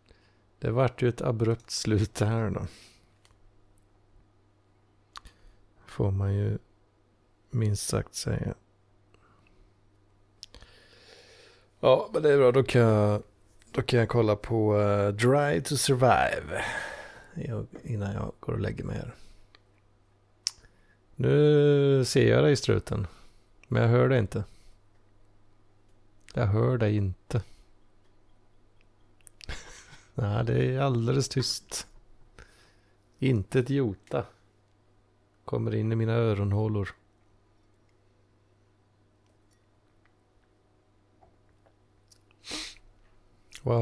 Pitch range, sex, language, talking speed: 100-120 Hz, male, Swedish, 90 wpm